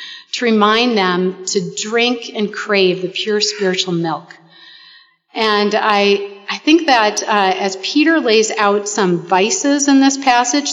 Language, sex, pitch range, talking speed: English, female, 190-235 Hz, 145 wpm